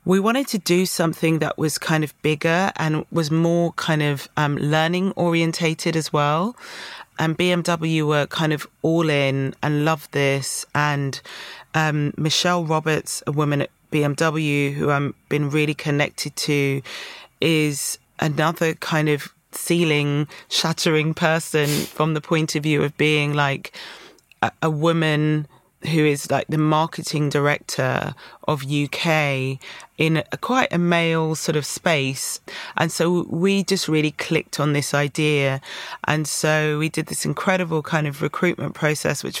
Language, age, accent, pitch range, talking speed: English, 30-49, British, 145-165 Hz, 150 wpm